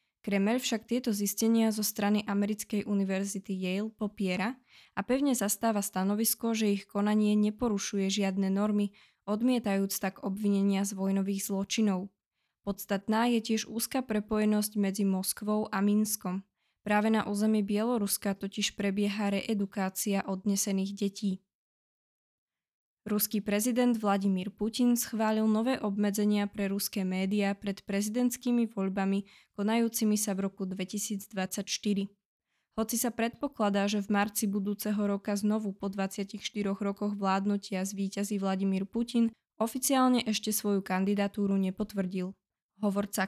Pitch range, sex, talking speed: 200-220 Hz, female, 115 wpm